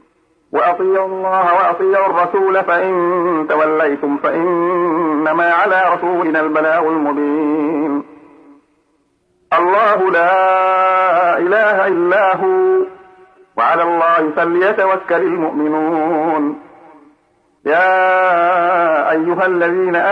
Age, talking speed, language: 50-69, 70 wpm, Arabic